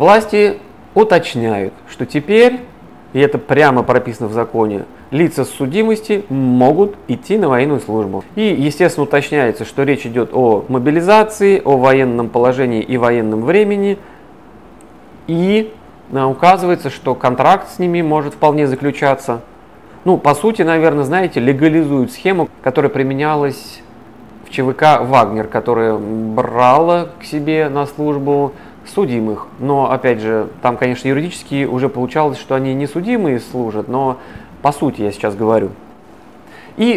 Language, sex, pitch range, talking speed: Russian, male, 120-160 Hz, 130 wpm